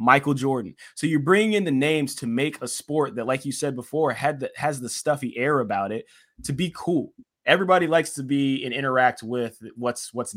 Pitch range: 110-130 Hz